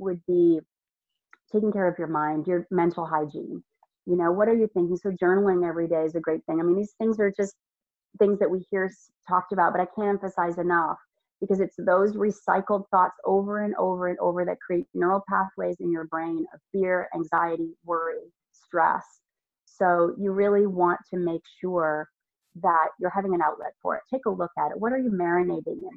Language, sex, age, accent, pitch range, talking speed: English, female, 30-49, American, 175-220 Hz, 200 wpm